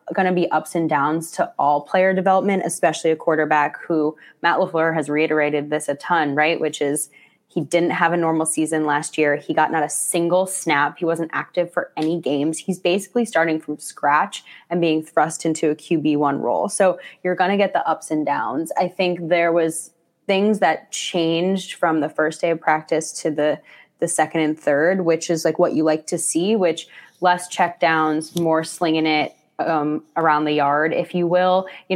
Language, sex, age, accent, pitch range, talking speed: English, female, 10-29, American, 155-185 Hz, 205 wpm